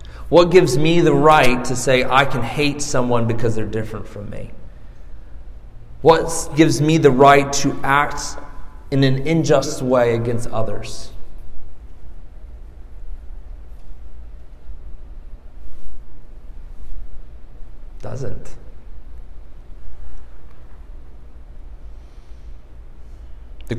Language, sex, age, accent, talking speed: English, male, 40-59, American, 80 wpm